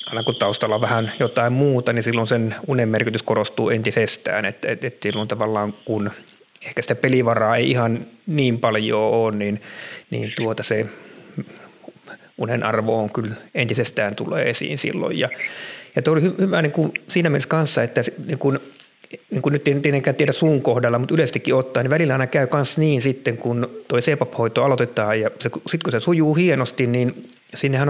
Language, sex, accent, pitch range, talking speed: Finnish, male, native, 115-140 Hz, 175 wpm